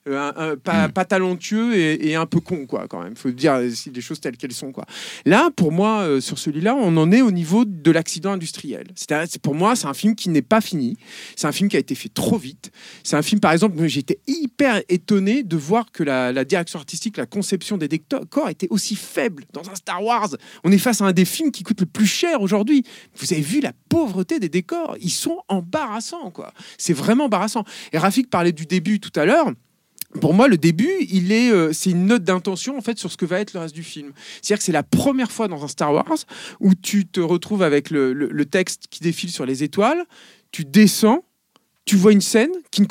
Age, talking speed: 40-59, 240 wpm